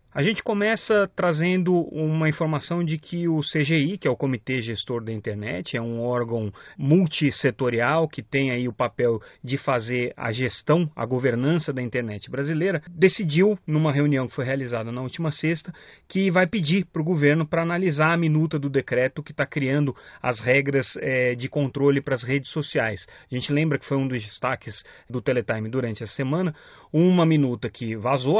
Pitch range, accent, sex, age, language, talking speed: 125-165 Hz, Brazilian, male, 30-49, Portuguese, 175 wpm